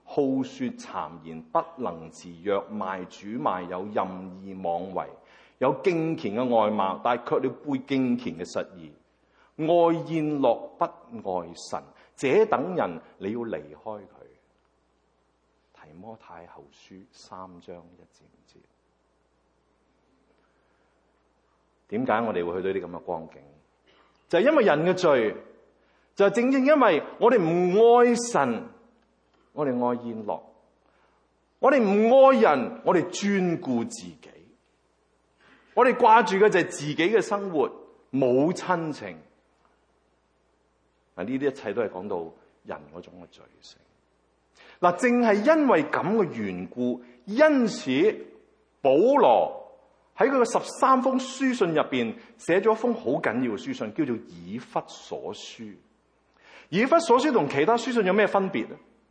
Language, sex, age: English, male, 30-49